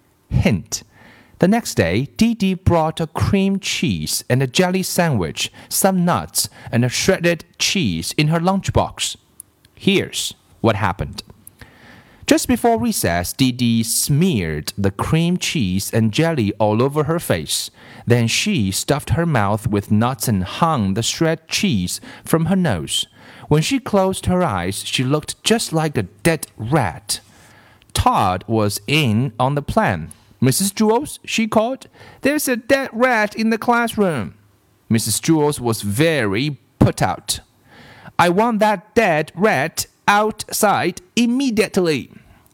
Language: Chinese